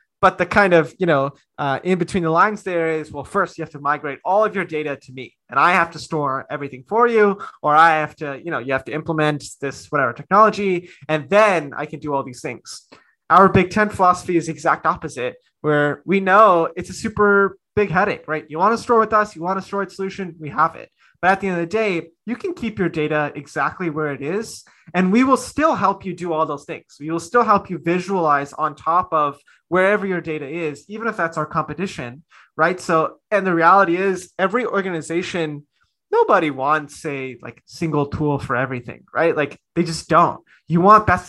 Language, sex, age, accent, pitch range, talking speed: English, male, 20-39, American, 150-195 Hz, 225 wpm